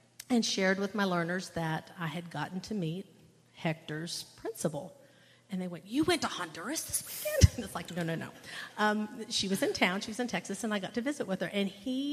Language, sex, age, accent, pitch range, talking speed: English, female, 50-69, American, 165-200 Hz, 230 wpm